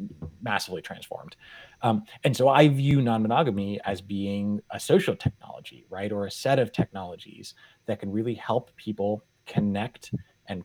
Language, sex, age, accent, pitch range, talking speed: English, male, 30-49, American, 100-120 Hz, 145 wpm